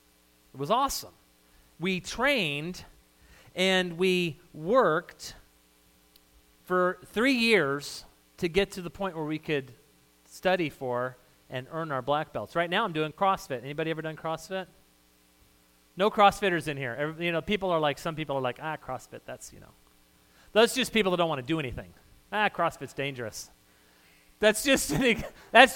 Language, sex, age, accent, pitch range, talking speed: English, male, 40-59, American, 115-195 Hz, 160 wpm